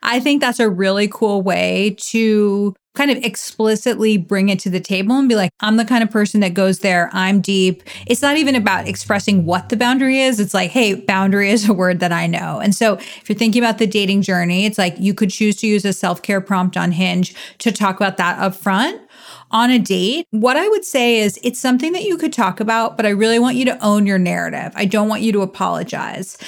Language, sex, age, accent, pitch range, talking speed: English, female, 30-49, American, 190-235 Hz, 235 wpm